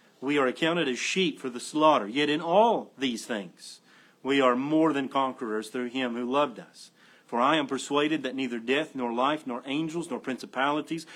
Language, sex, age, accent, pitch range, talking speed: English, male, 40-59, American, 120-145 Hz, 195 wpm